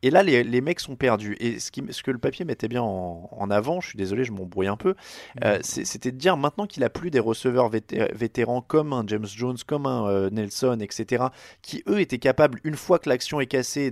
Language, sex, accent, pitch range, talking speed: French, male, French, 110-145 Hz, 245 wpm